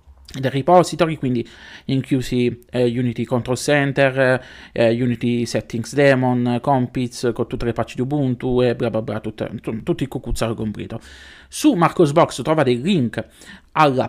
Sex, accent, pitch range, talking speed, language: male, native, 115-150 Hz, 150 wpm, Italian